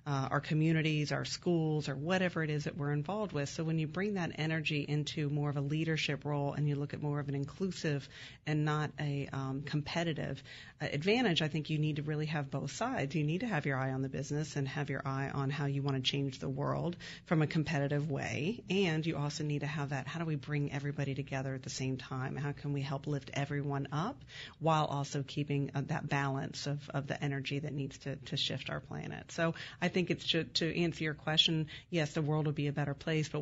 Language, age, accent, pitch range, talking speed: English, 40-59, American, 140-155 Hz, 240 wpm